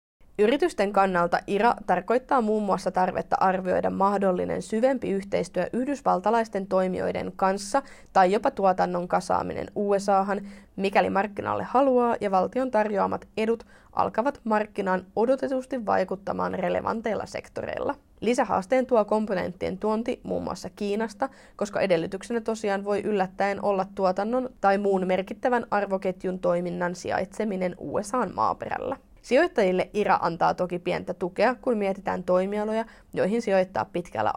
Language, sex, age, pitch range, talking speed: Finnish, female, 20-39, 185-225 Hz, 115 wpm